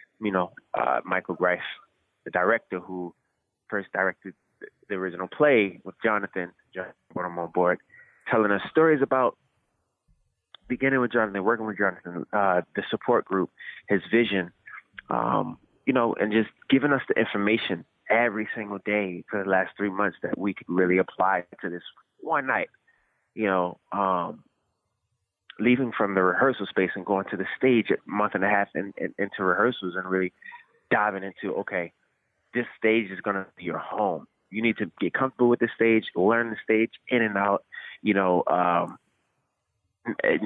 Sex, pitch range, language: male, 95-115 Hz, English